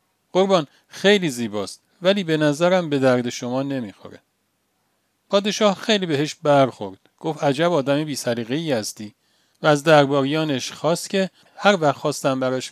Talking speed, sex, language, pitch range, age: 130 wpm, male, Persian, 125-170 Hz, 40-59